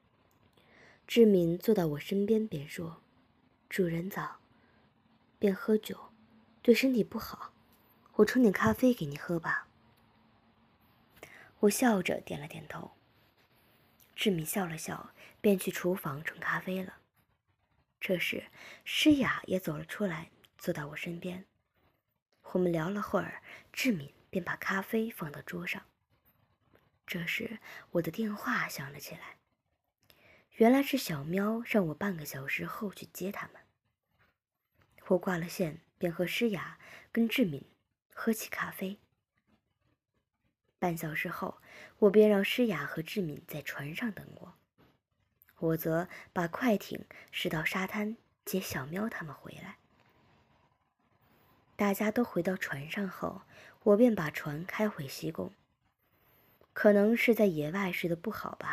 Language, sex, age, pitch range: Chinese, male, 20-39, 165-215 Hz